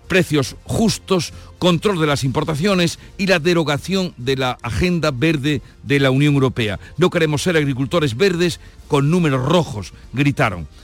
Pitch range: 130-170 Hz